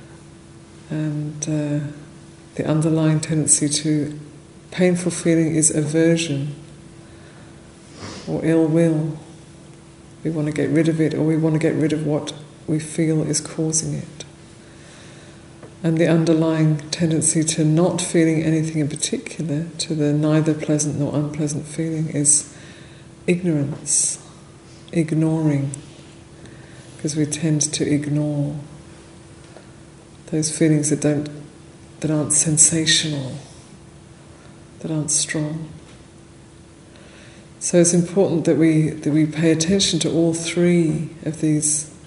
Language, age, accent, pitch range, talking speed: English, 50-69, British, 150-165 Hz, 115 wpm